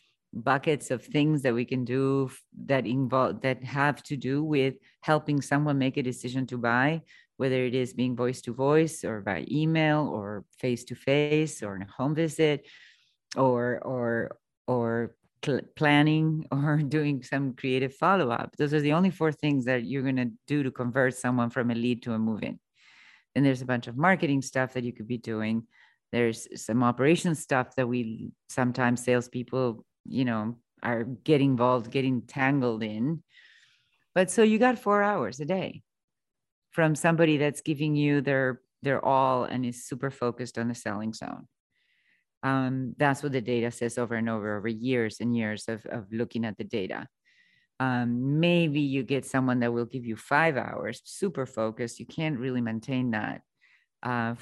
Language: English